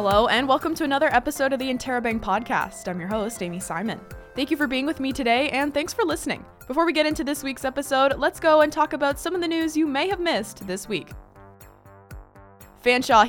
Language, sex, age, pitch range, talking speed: English, female, 20-39, 220-285 Hz, 220 wpm